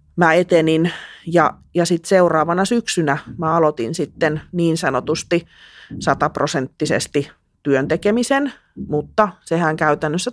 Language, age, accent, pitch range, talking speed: Finnish, 30-49, native, 145-175 Hz, 105 wpm